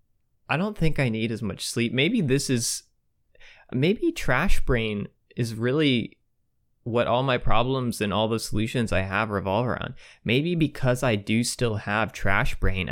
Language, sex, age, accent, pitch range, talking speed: English, male, 20-39, American, 100-120 Hz, 165 wpm